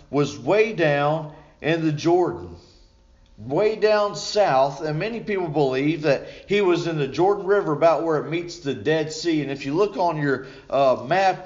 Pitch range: 135-180 Hz